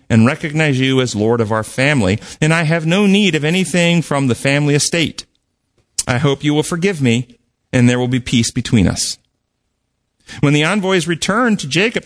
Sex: male